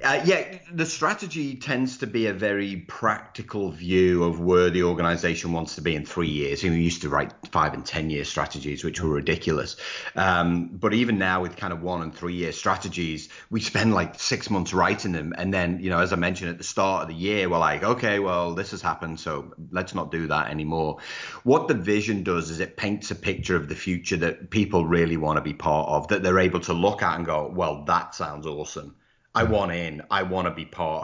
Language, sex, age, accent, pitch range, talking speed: English, male, 30-49, British, 85-105 Hz, 230 wpm